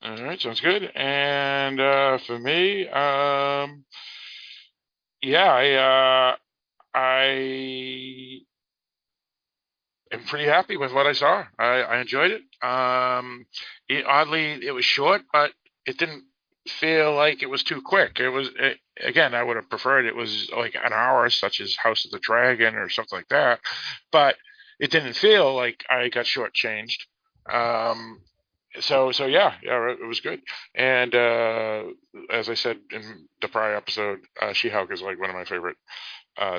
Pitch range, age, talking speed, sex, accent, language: 125-160 Hz, 50-69, 155 wpm, male, American, English